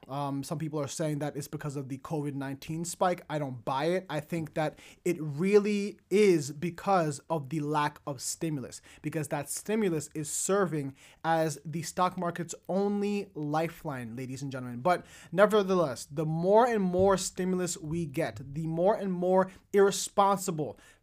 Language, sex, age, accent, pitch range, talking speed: English, male, 30-49, American, 155-195 Hz, 160 wpm